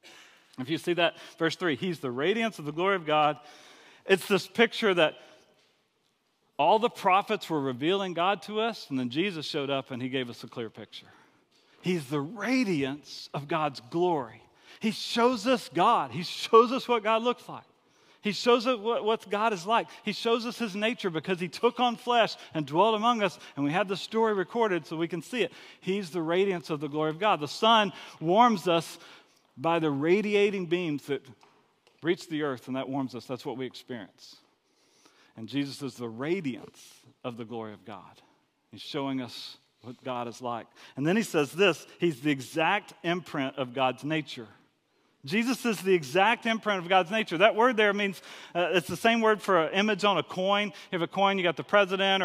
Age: 40-59